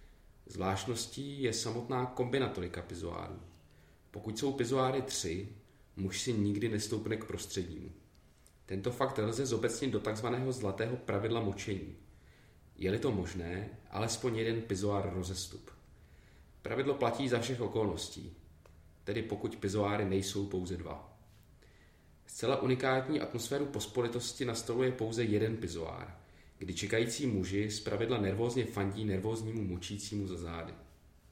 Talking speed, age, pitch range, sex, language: 120 wpm, 30-49, 95-120 Hz, male, Czech